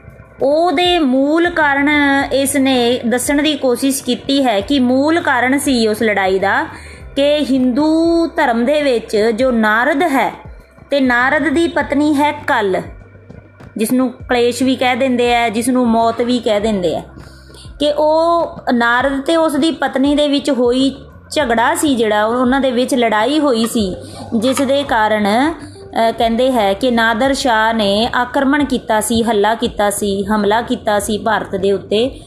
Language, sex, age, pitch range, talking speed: Punjabi, female, 20-39, 220-275 Hz, 155 wpm